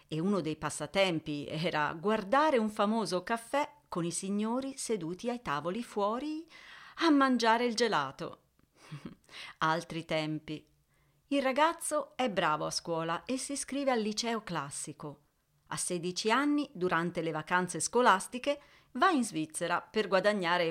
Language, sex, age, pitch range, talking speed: Italian, female, 40-59, 165-235 Hz, 135 wpm